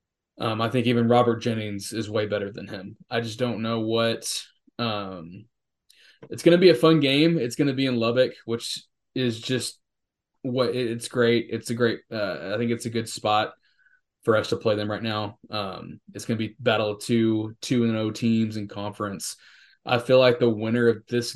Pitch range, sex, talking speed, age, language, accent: 105-120 Hz, male, 210 wpm, 20-39, English, American